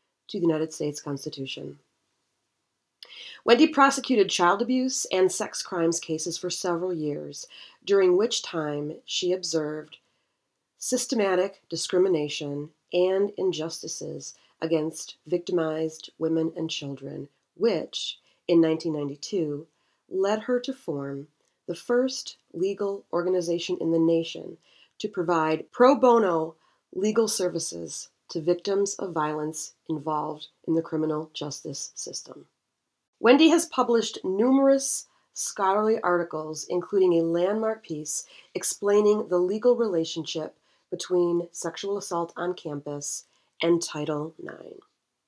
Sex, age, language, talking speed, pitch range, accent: female, 30-49, English, 110 wpm, 155-210 Hz, American